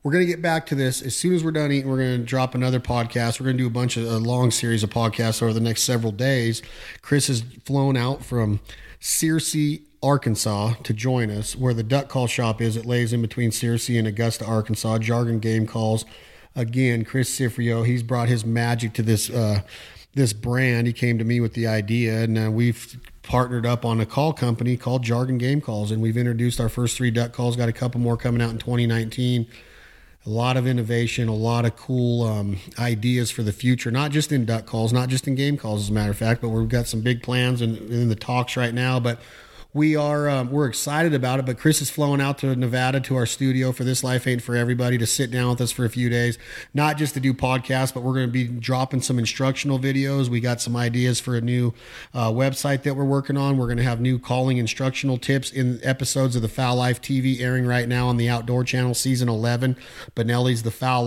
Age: 40-59